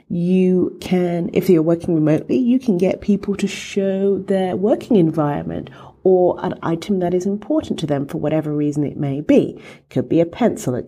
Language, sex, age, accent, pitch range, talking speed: English, female, 40-59, British, 140-190 Hz, 195 wpm